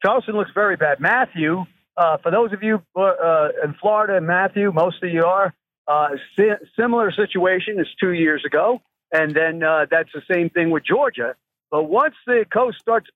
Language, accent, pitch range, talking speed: English, American, 160-210 Hz, 180 wpm